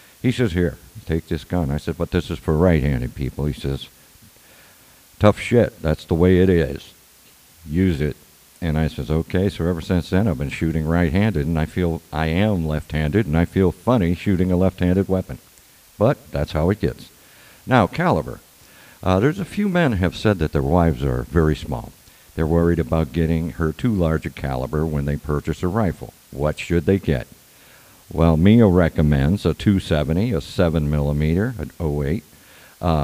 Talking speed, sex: 180 wpm, male